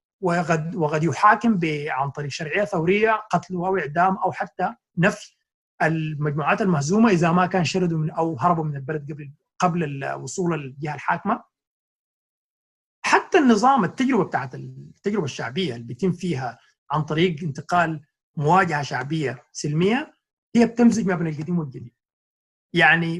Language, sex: Arabic, male